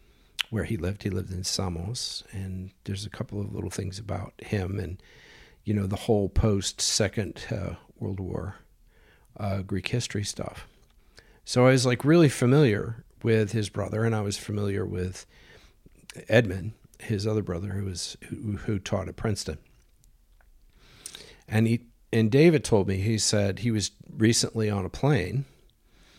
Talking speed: 155 wpm